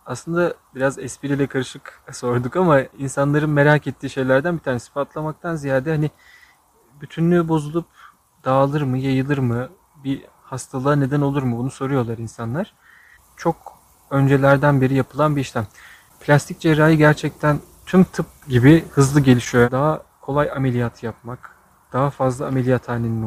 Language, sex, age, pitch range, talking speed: Turkish, male, 30-49, 125-150 Hz, 130 wpm